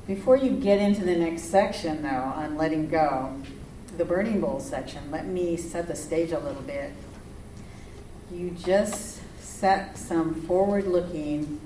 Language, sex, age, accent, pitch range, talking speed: English, female, 50-69, American, 165-205 Hz, 145 wpm